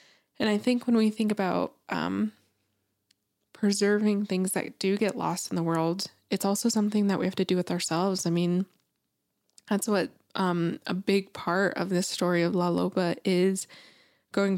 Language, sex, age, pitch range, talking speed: English, female, 20-39, 175-200 Hz, 175 wpm